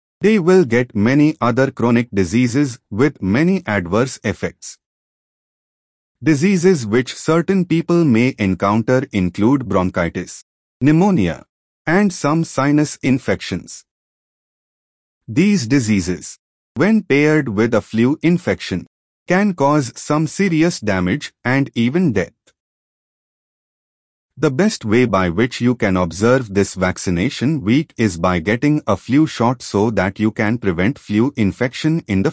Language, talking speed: English, 125 wpm